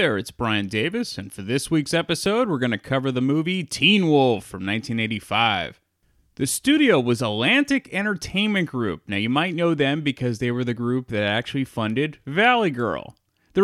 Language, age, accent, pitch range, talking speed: English, 30-49, American, 130-210 Hz, 170 wpm